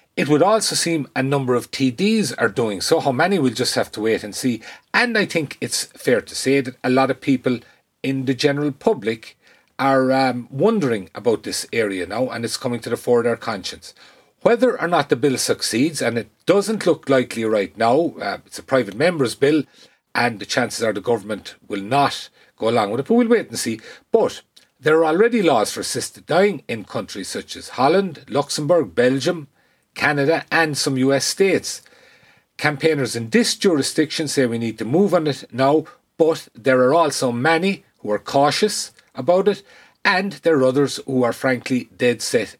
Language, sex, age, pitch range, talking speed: English, male, 40-59, 125-170 Hz, 195 wpm